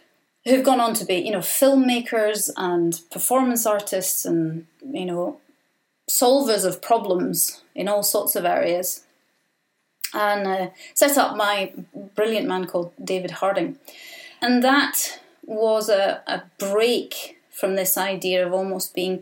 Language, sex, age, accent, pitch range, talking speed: English, female, 30-49, British, 185-250 Hz, 135 wpm